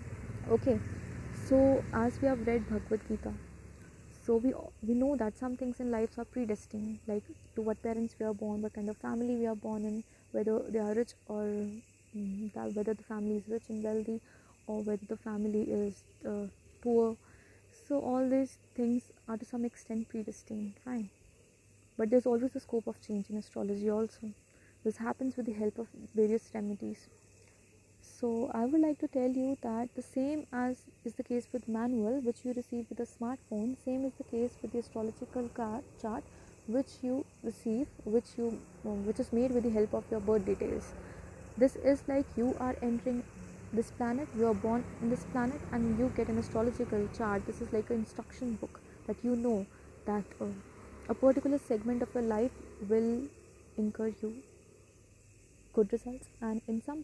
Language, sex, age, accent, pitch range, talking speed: English, female, 20-39, Indian, 215-245 Hz, 180 wpm